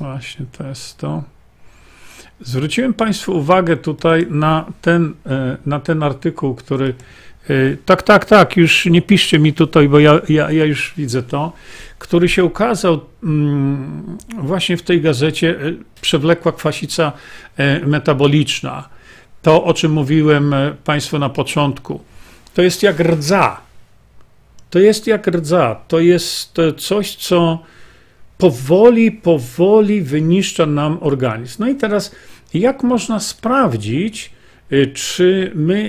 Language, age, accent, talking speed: Polish, 50-69, native, 115 wpm